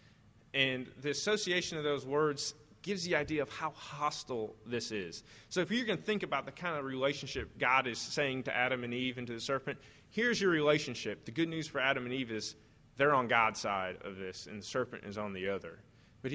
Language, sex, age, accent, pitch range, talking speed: English, male, 20-39, American, 115-160 Hz, 225 wpm